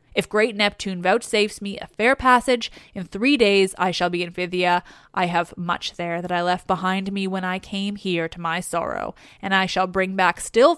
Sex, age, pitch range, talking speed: female, 20-39, 185-220 Hz, 210 wpm